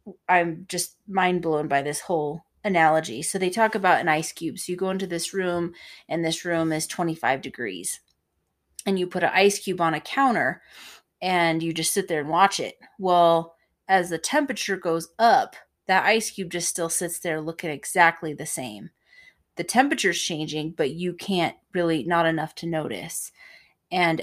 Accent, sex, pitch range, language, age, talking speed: American, female, 165-190 Hz, English, 30-49, 180 wpm